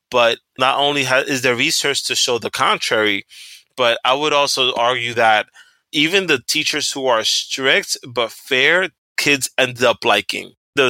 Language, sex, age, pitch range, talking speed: English, male, 20-39, 115-140 Hz, 160 wpm